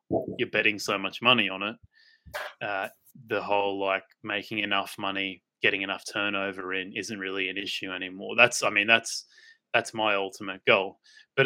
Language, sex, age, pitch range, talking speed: English, male, 20-39, 95-110 Hz, 170 wpm